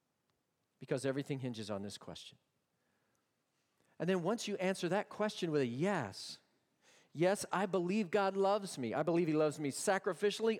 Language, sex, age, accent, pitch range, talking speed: English, male, 40-59, American, 135-190 Hz, 160 wpm